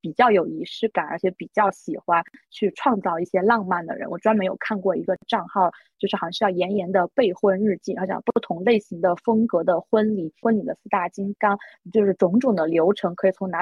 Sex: female